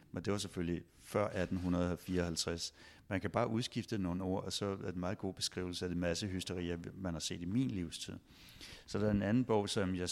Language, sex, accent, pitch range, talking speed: Danish, male, native, 90-100 Hz, 225 wpm